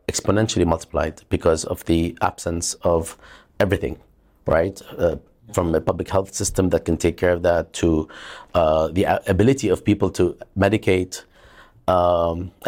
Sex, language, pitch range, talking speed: male, English, 85-100 Hz, 140 wpm